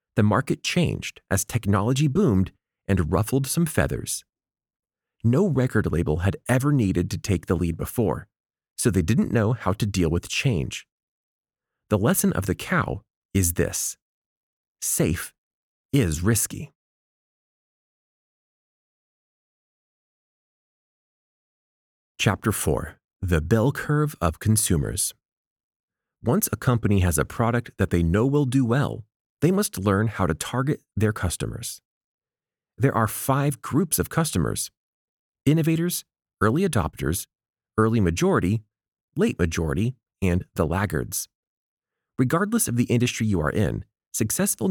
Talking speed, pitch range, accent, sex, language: 120 wpm, 90-135 Hz, American, male, English